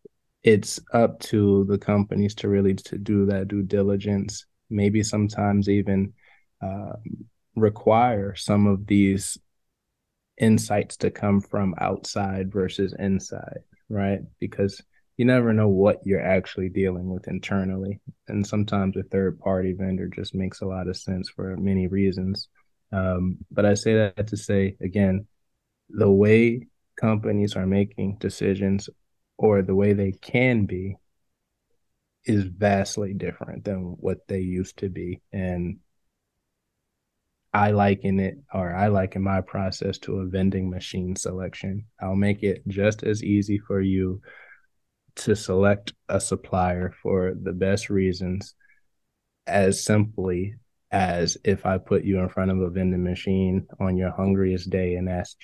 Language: English